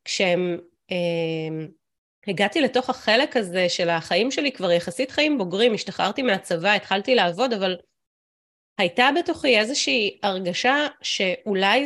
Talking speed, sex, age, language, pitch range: 110 wpm, female, 30-49, Hebrew, 180-245 Hz